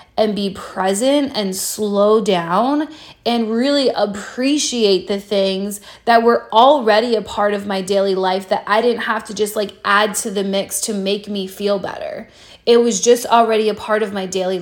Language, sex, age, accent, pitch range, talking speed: English, female, 20-39, American, 200-250 Hz, 185 wpm